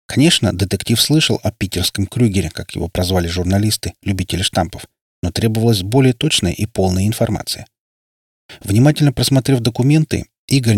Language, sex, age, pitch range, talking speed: Russian, male, 30-49, 90-120 Hz, 130 wpm